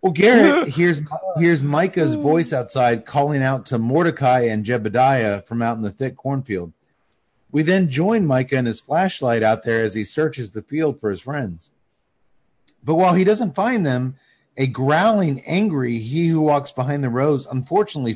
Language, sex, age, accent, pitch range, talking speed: English, male, 40-59, American, 125-170 Hz, 155 wpm